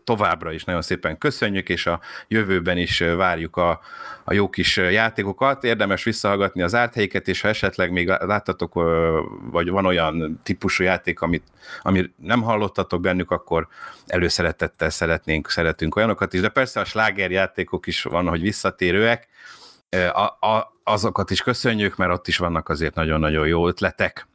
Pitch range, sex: 85-110 Hz, male